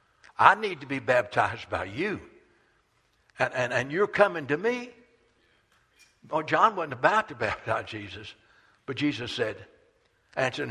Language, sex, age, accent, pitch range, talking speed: English, male, 60-79, American, 130-185 Hz, 140 wpm